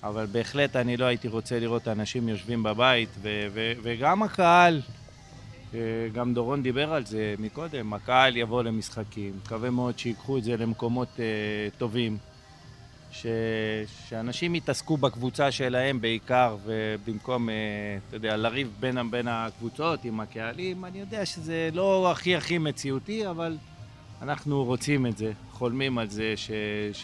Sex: male